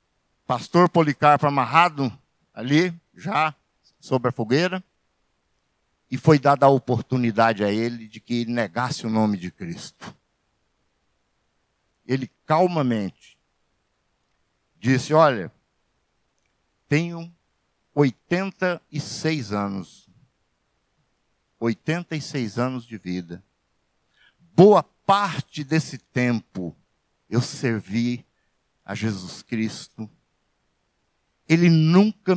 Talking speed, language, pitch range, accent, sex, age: 85 wpm, Portuguese, 115-155 Hz, Brazilian, male, 60-79